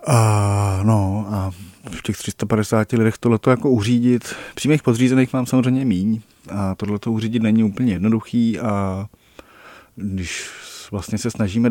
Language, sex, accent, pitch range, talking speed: Czech, male, native, 100-115 Hz, 135 wpm